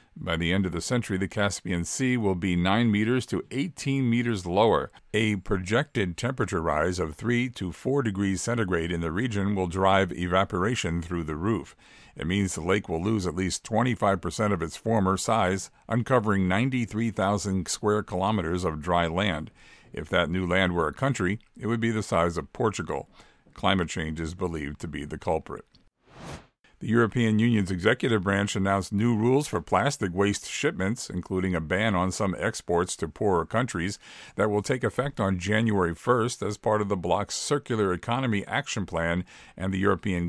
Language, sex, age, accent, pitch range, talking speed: English, male, 50-69, American, 90-110 Hz, 175 wpm